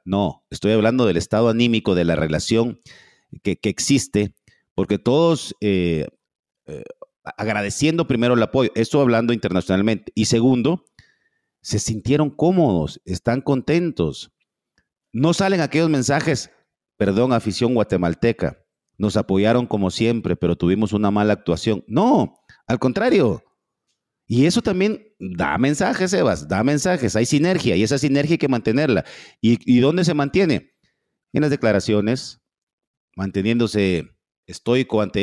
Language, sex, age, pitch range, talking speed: English, male, 50-69, 105-145 Hz, 130 wpm